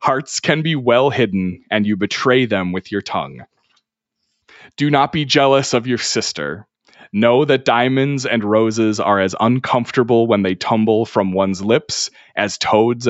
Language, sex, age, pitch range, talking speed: English, male, 30-49, 105-130 Hz, 160 wpm